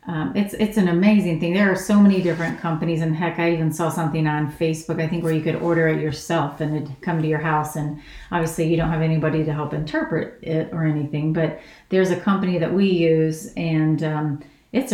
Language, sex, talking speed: English, female, 225 wpm